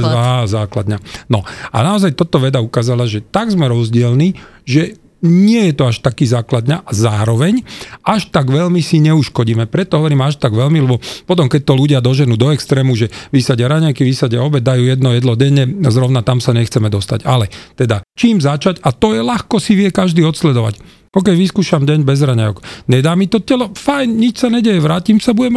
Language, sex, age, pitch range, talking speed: Slovak, male, 40-59, 115-155 Hz, 190 wpm